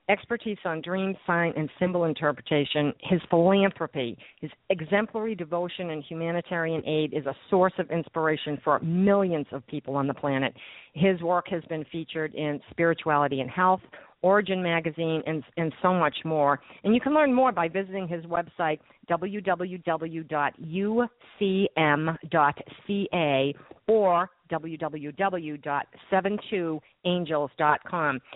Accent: American